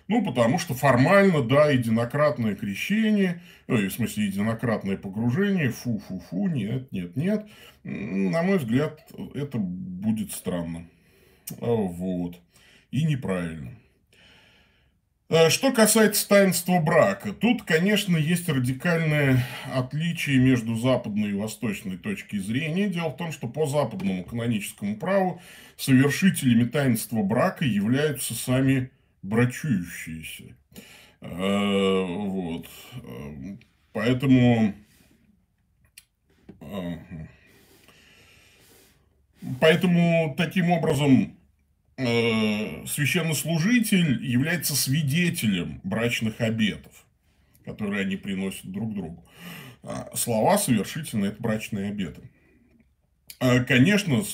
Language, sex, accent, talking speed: Russian, male, native, 85 wpm